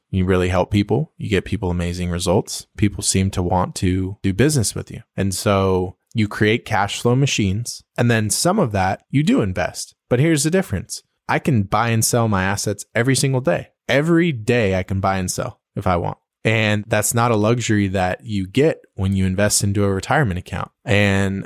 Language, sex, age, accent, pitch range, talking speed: English, male, 20-39, American, 95-120 Hz, 205 wpm